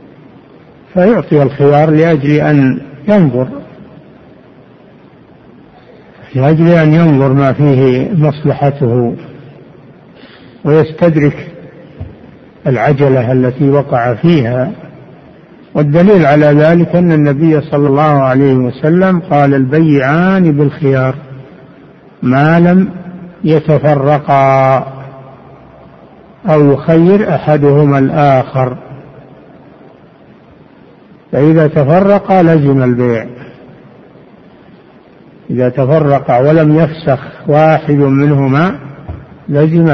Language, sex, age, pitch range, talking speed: Arabic, male, 60-79, 135-170 Hz, 70 wpm